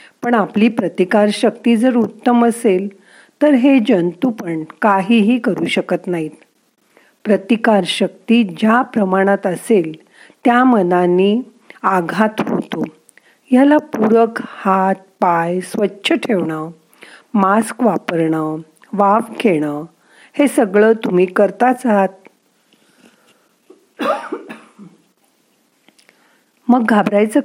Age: 50-69